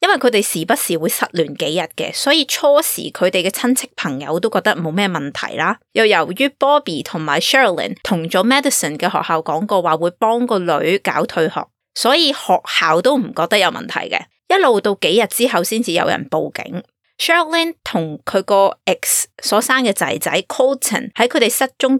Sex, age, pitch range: female, 20-39, 170-260 Hz